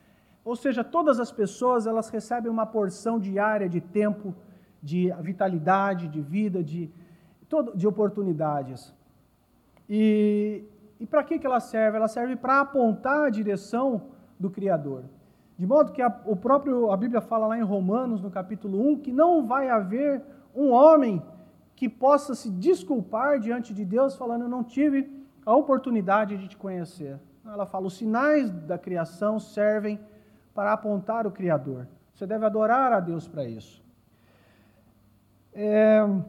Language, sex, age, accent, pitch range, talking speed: Portuguese, male, 40-59, Brazilian, 180-235 Hz, 145 wpm